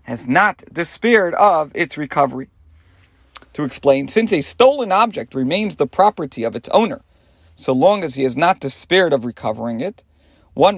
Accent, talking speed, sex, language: American, 160 wpm, male, English